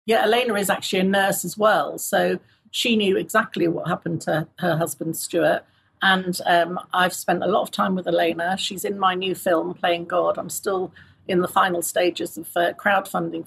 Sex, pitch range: female, 175-200 Hz